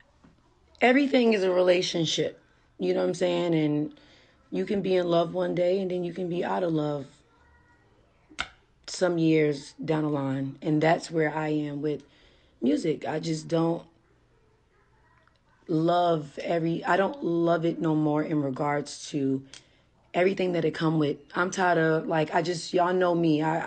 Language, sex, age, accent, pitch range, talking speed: English, female, 30-49, American, 145-180 Hz, 165 wpm